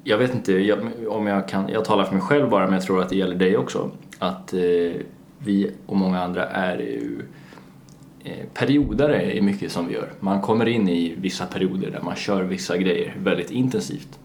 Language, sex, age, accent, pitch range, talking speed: Swedish, male, 20-39, native, 90-110 Hz, 205 wpm